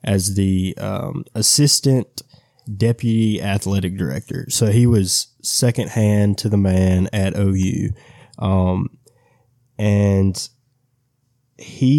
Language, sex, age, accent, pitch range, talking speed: English, male, 20-39, American, 100-125 Hz, 100 wpm